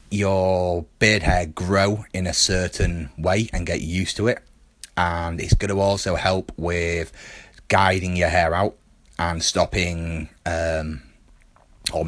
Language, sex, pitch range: English, male, 85-95 Hz